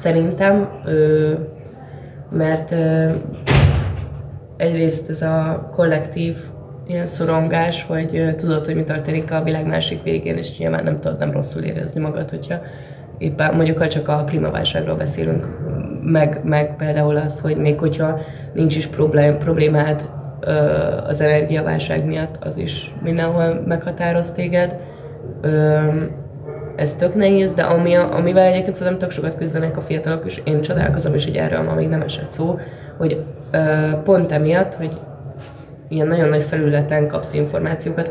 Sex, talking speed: female, 135 wpm